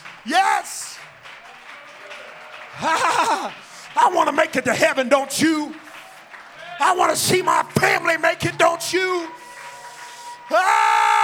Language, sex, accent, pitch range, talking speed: English, male, American, 275-345 Hz, 110 wpm